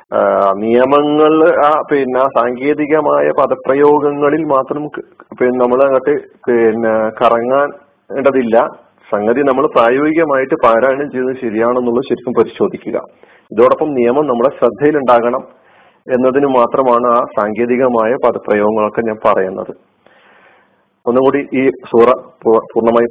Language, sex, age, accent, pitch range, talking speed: Malayalam, male, 40-59, native, 130-160 Hz, 85 wpm